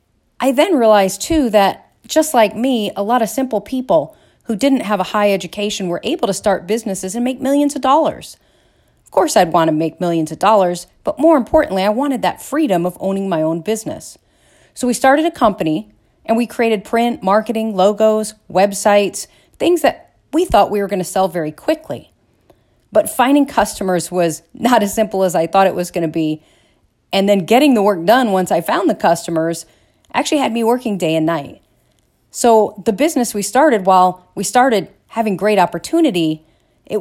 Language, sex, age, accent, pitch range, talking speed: English, female, 40-59, American, 185-245 Hz, 190 wpm